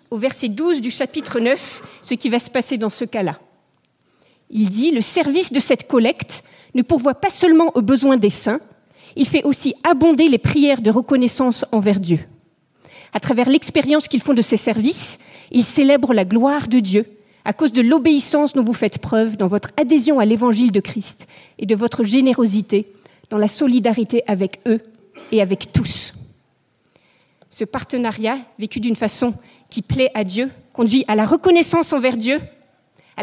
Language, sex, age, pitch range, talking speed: French, female, 40-59, 220-280 Hz, 175 wpm